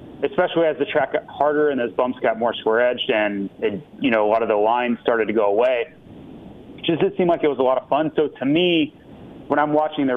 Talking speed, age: 255 wpm, 30-49